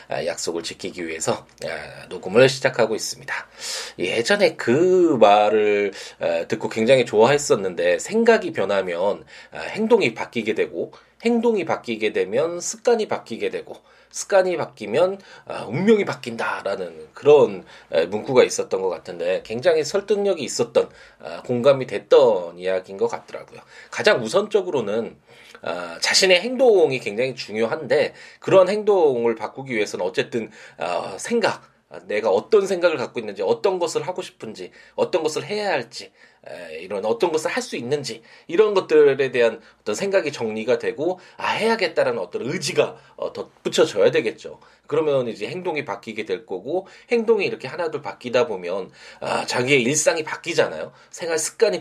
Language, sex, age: Korean, male, 20-39